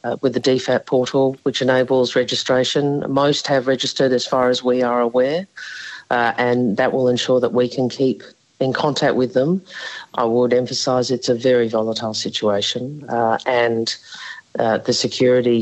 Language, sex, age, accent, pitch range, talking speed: Dutch, female, 50-69, Australian, 125-205 Hz, 165 wpm